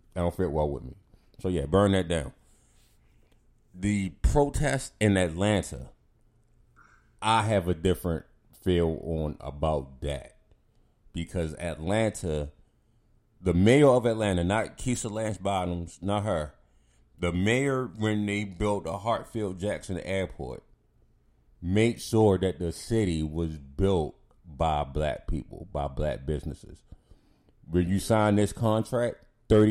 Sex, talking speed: male, 125 wpm